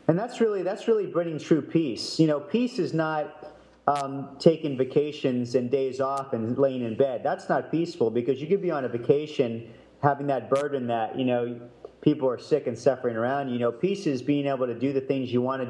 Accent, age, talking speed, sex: American, 40-59, 220 wpm, male